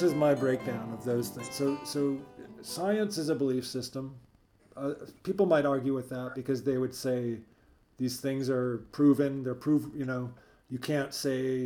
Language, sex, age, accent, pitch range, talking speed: English, male, 40-59, American, 125-145 Hz, 180 wpm